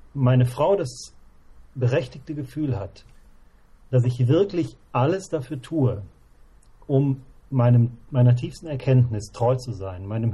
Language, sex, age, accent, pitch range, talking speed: German, male, 40-59, German, 105-130 Hz, 120 wpm